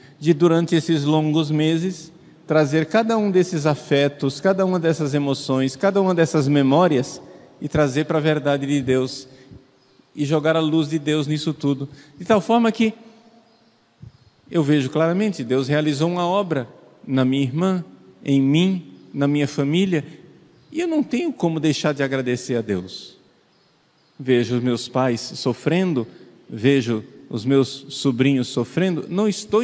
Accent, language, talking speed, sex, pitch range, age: Brazilian, Portuguese, 150 wpm, male, 130-165 Hz, 50-69